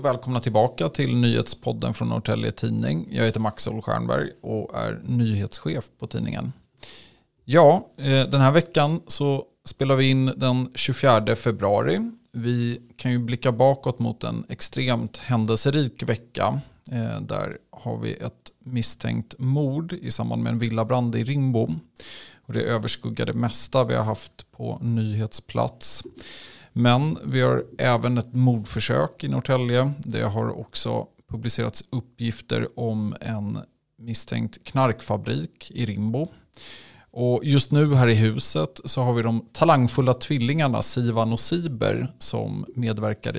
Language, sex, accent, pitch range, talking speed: Swedish, male, native, 110-130 Hz, 130 wpm